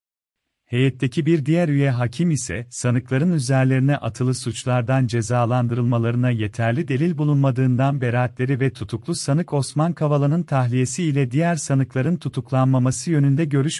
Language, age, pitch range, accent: Turkish, 40-59, 120-150 Hz, native